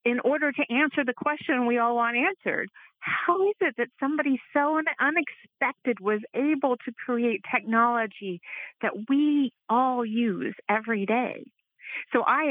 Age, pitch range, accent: 40-59, 195-260 Hz, American